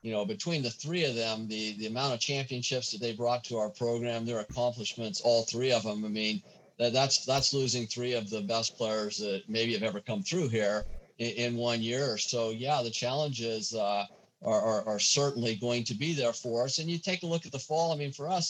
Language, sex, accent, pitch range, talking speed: English, male, American, 110-130 Hz, 235 wpm